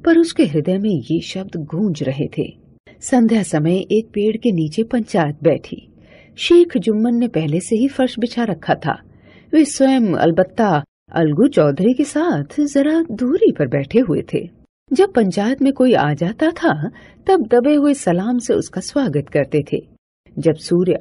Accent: native